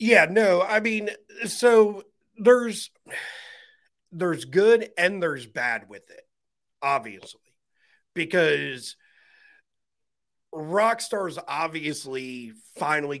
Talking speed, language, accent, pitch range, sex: 85 wpm, English, American, 130-195 Hz, male